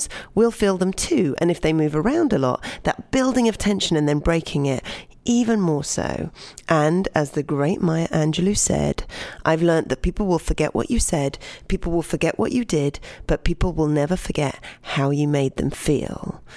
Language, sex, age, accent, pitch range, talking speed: English, female, 30-49, British, 150-205 Hz, 195 wpm